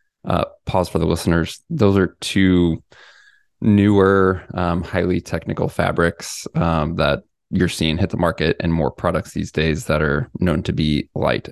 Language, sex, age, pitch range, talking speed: English, male, 20-39, 80-95 Hz, 160 wpm